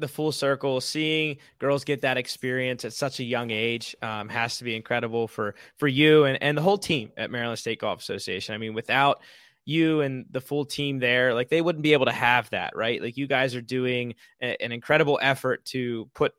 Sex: male